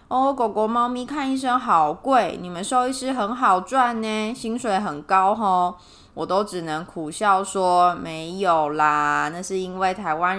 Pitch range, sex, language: 175-215 Hz, female, Chinese